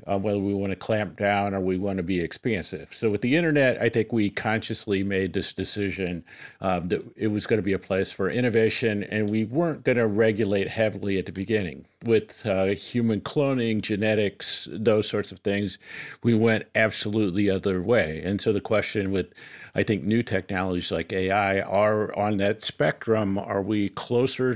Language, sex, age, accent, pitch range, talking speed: English, male, 50-69, American, 95-120 Hz, 190 wpm